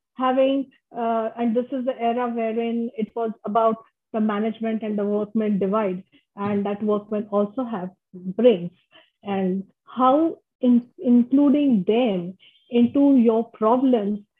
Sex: female